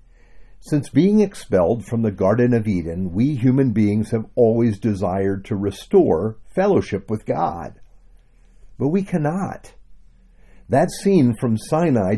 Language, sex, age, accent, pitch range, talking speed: English, male, 50-69, American, 95-130 Hz, 130 wpm